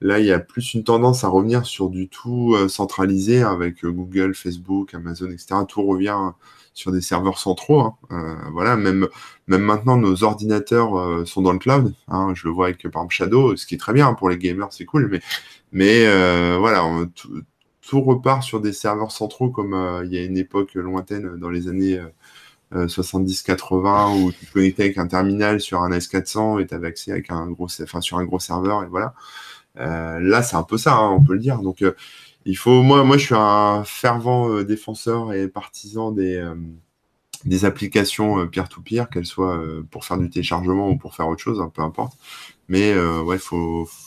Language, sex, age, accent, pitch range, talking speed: French, male, 20-39, French, 90-105 Hz, 210 wpm